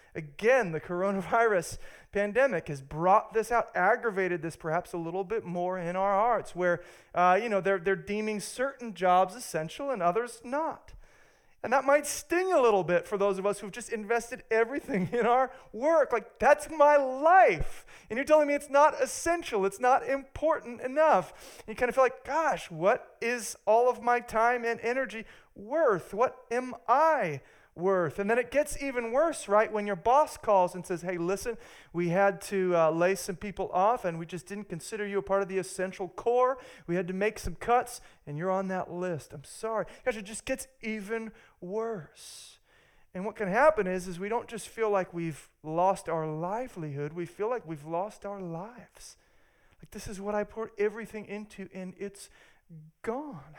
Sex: male